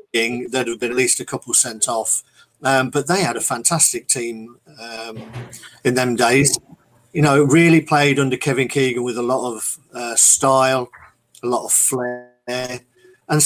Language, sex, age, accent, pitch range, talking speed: English, male, 50-69, British, 120-150 Hz, 170 wpm